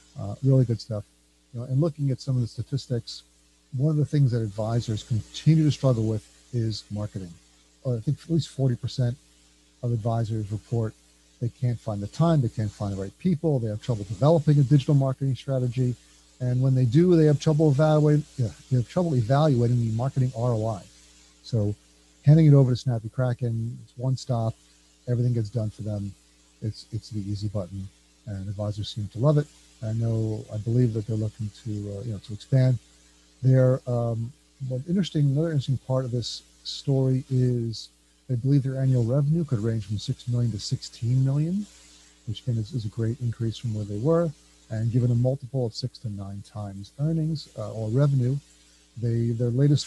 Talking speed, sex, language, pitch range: 190 wpm, male, English, 105-135 Hz